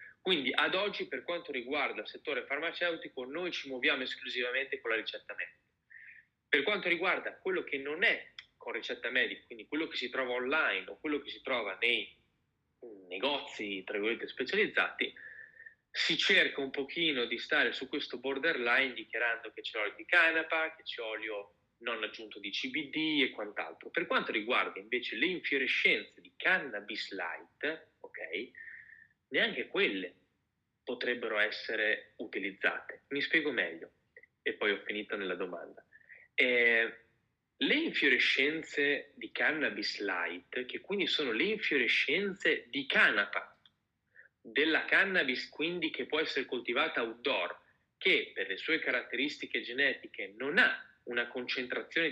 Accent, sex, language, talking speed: native, male, Italian, 140 wpm